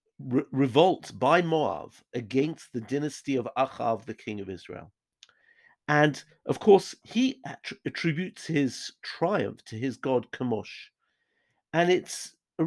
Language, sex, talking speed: English, male, 135 wpm